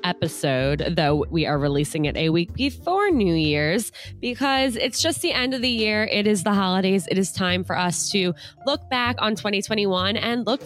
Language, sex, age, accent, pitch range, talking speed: English, female, 20-39, American, 170-220 Hz, 195 wpm